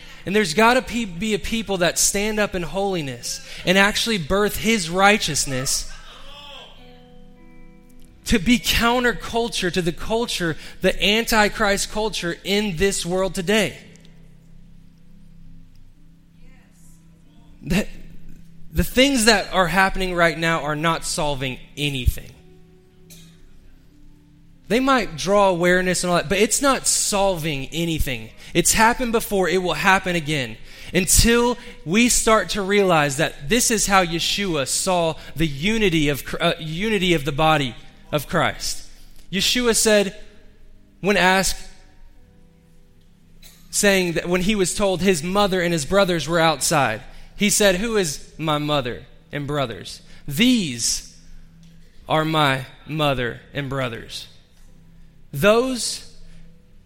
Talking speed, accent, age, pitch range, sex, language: 120 wpm, American, 20-39, 150-200 Hz, male, English